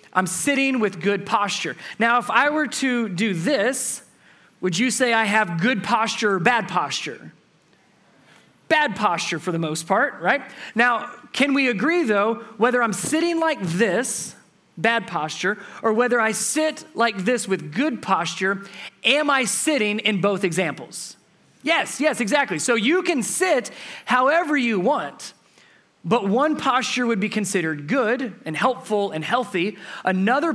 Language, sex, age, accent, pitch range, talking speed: English, male, 30-49, American, 185-250 Hz, 155 wpm